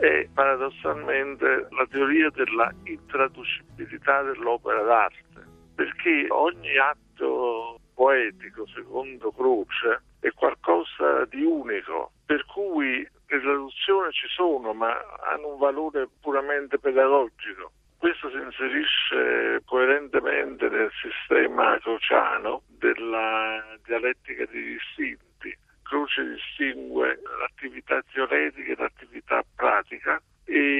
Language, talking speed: Italian, 95 wpm